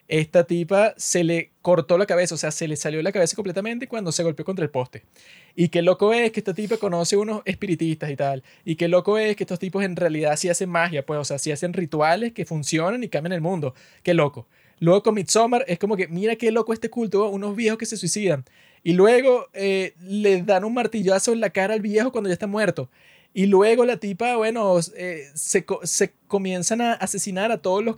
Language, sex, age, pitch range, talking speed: Spanish, male, 20-39, 165-205 Hz, 230 wpm